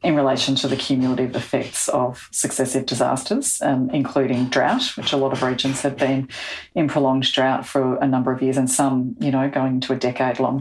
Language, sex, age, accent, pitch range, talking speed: English, female, 40-59, Australian, 130-145 Hz, 200 wpm